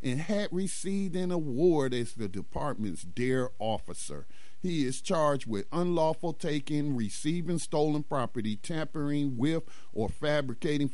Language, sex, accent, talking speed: English, male, American, 125 wpm